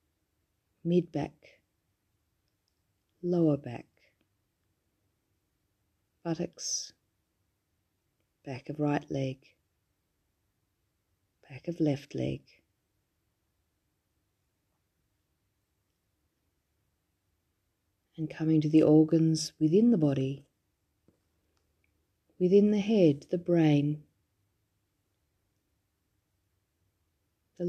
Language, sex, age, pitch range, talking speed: English, female, 40-59, 95-150 Hz, 60 wpm